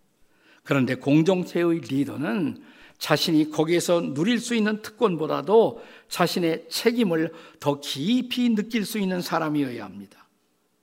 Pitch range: 145-205 Hz